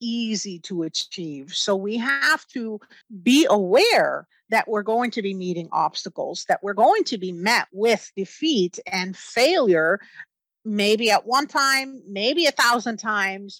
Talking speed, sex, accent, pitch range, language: 150 wpm, female, American, 180-225 Hz, English